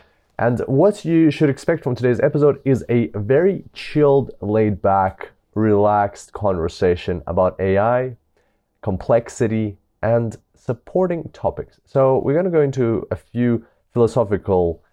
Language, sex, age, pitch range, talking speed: English, male, 30-49, 85-115 Hz, 125 wpm